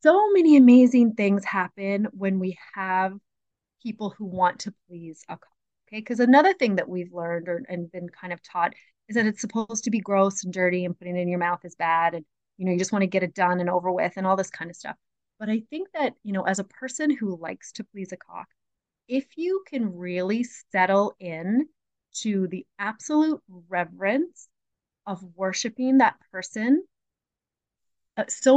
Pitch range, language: 180-235 Hz, English